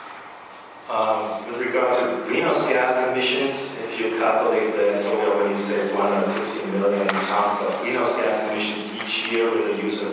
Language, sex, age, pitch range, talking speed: English, male, 40-59, 105-135 Hz, 160 wpm